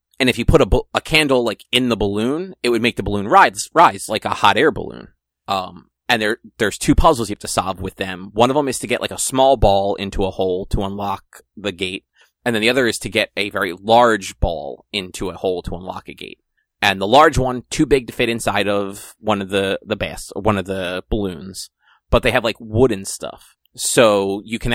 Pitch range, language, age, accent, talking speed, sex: 95-115 Hz, English, 30-49, American, 240 wpm, male